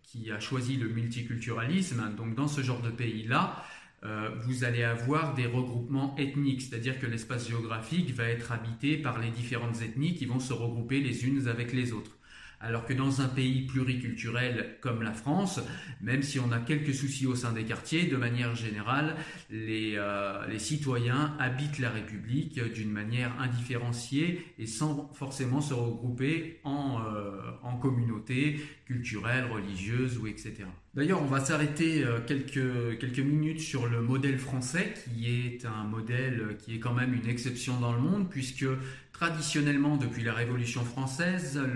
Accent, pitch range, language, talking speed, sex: French, 120-145 Hz, French, 155 wpm, male